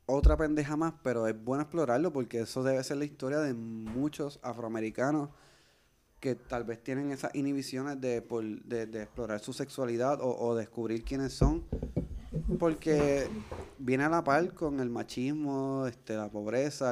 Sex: male